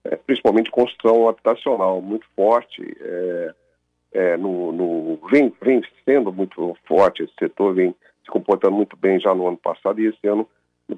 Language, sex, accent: Portuguese, male, Brazilian